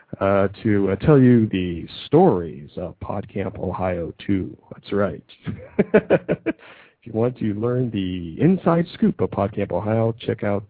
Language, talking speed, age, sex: English, 145 wpm, 40-59, male